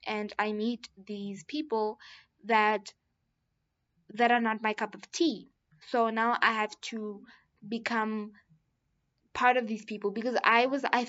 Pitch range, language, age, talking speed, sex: 205-235 Hz, English, 10-29, 145 wpm, female